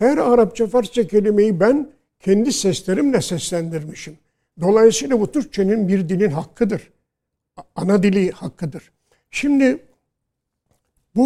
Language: Turkish